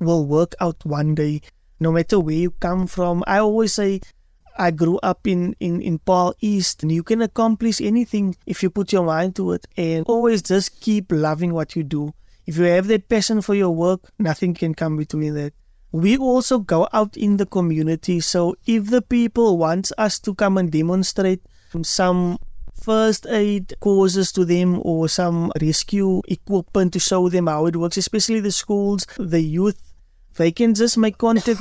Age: 20-39